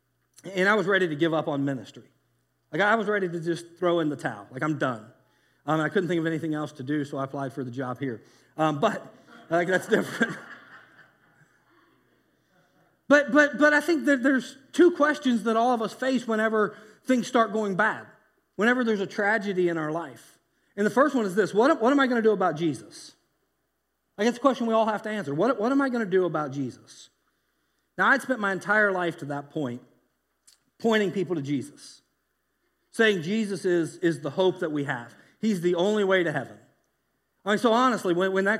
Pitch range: 150-215 Hz